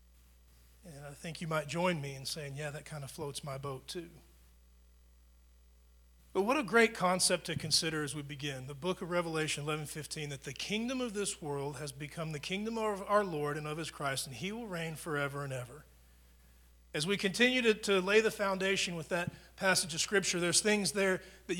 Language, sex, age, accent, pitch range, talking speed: English, male, 40-59, American, 140-205 Hz, 205 wpm